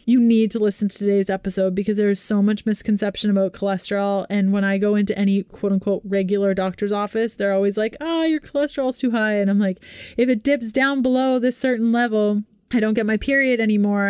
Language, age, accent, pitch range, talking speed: English, 20-39, American, 200-220 Hz, 220 wpm